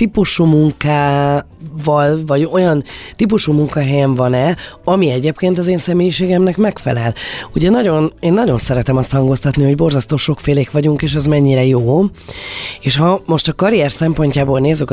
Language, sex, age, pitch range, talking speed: Hungarian, female, 30-49, 135-165 Hz, 140 wpm